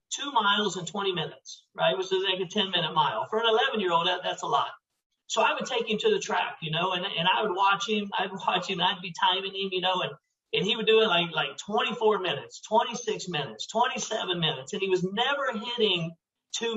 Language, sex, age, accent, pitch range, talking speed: English, male, 50-69, American, 190-225 Hz, 245 wpm